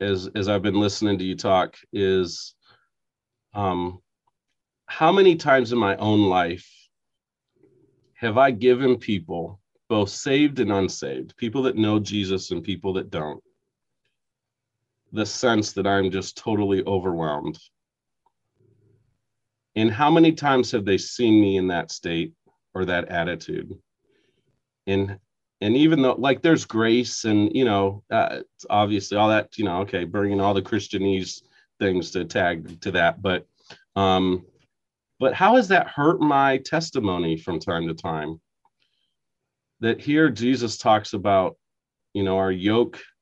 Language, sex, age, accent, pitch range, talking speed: English, male, 40-59, American, 95-120 Hz, 140 wpm